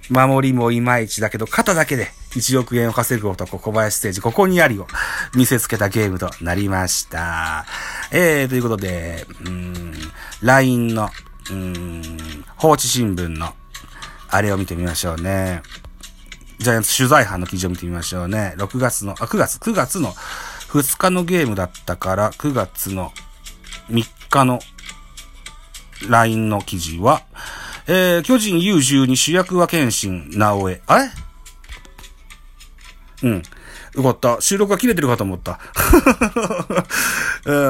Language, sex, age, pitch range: Japanese, male, 40-59, 90-130 Hz